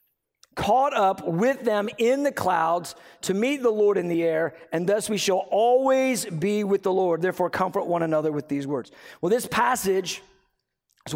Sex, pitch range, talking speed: male, 180-230 Hz, 185 wpm